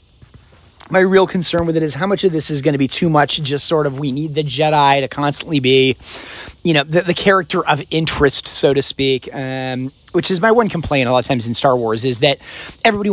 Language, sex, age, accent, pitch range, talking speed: English, male, 30-49, American, 135-170 Hz, 240 wpm